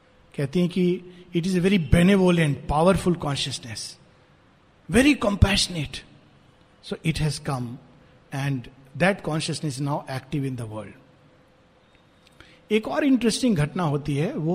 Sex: male